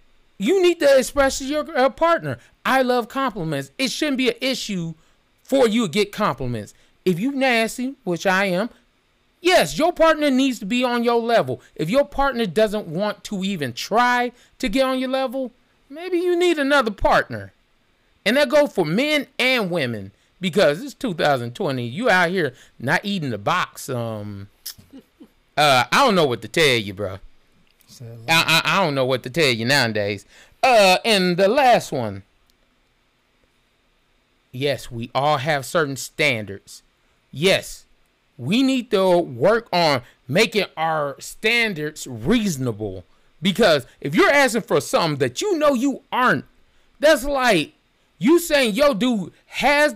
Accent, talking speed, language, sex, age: American, 155 wpm, English, male, 30-49